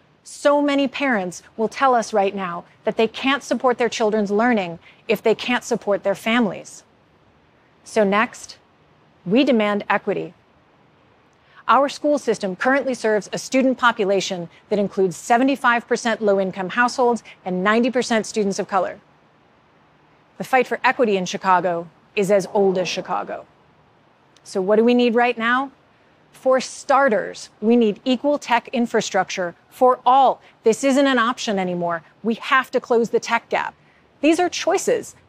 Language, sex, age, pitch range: Korean, female, 30-49, 200-260 Hz